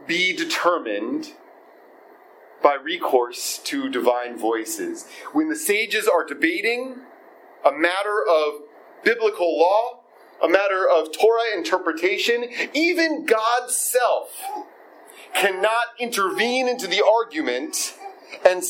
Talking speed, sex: 100 wpm, male